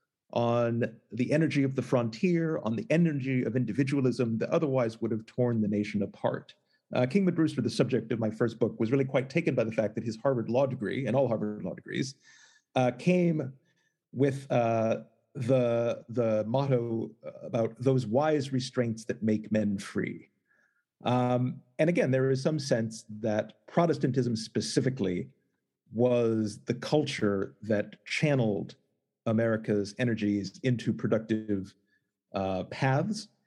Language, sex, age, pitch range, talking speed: English, male, 40-59, 110-135 Hz, 145 wpm